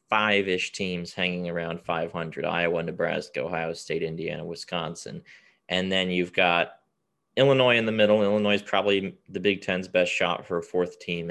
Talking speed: 165 wpm